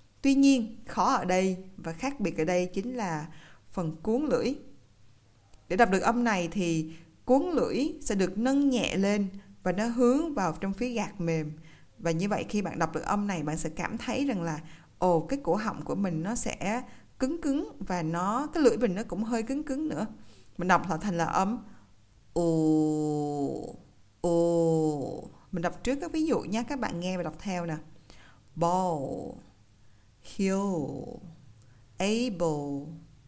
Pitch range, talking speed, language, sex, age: 160-220 Hz, 175 wpm, Vietnamese, female, 20-39